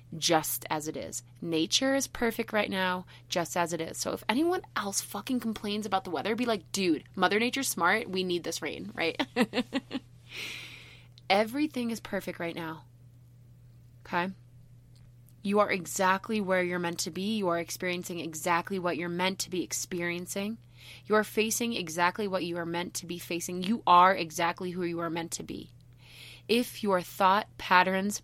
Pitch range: 160-195 Hz